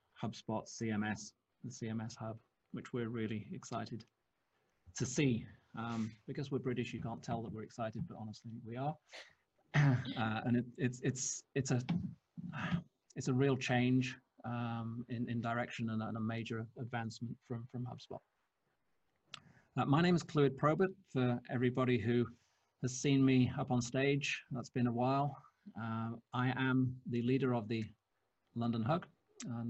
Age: 30-49